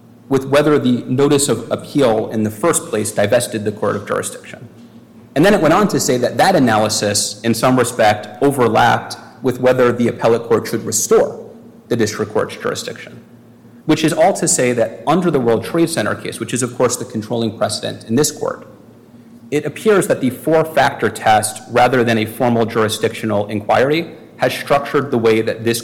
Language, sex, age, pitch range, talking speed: English, male, 30-49, 115-140 Hz, 185 wpm